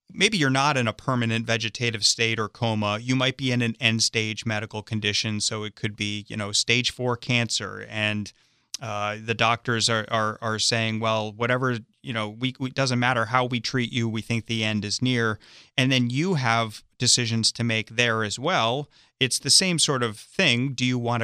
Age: 30-49